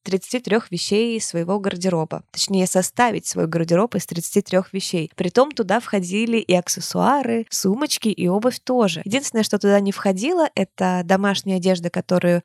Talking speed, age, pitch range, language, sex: 145 wpm, 20-39, 175-210 Hz, Russian, female